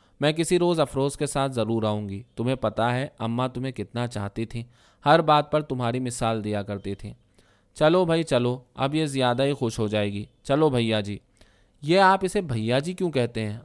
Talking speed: 205 wpm